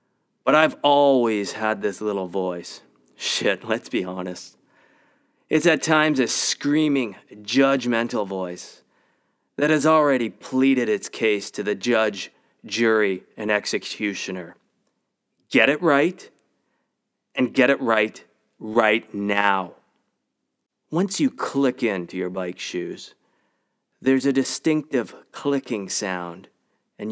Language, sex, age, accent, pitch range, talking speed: English, male, 30-49, American, 100-135 Hz, 115 wpm